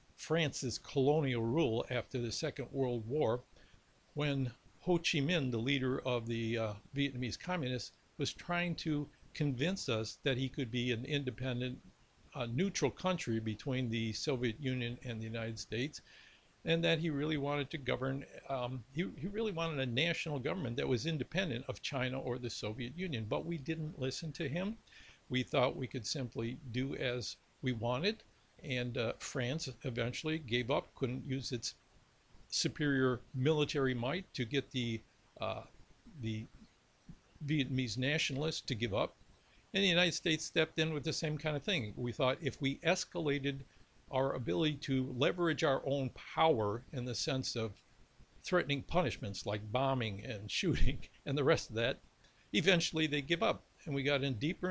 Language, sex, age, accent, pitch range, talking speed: English, male, 60-79, American, 125-155 Hz, 165 wpm